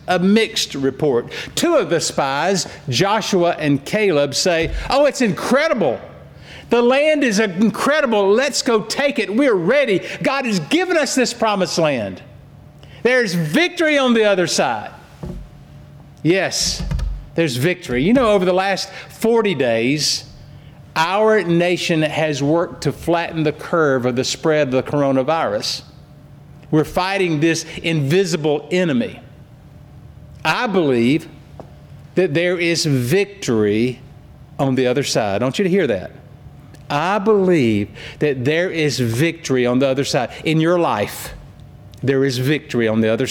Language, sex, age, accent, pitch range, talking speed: English, male, 50-69, American, 140-200 Hz, 140 wpm